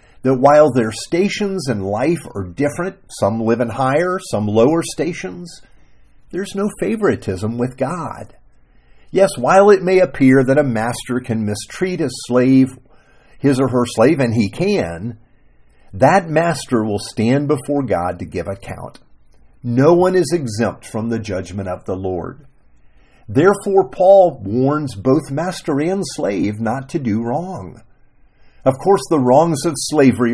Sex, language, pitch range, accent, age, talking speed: male, English, 100-145 Hz, American, 50-69, 150 wpm